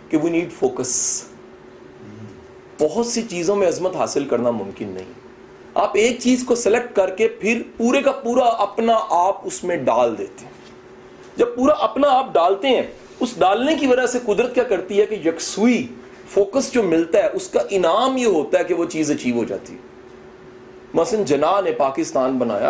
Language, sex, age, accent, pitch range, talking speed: English, male, 40-59, Indian, 180-275 Hz, 165 wpm